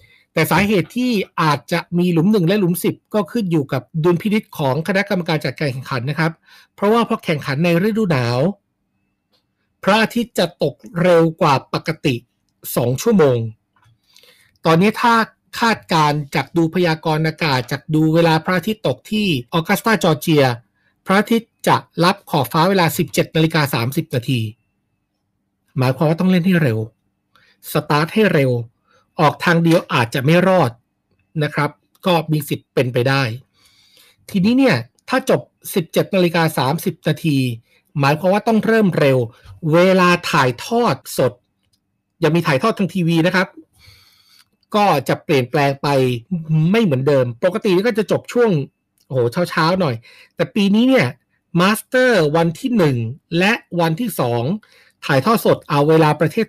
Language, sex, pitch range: Thai, male, 130-185 Hz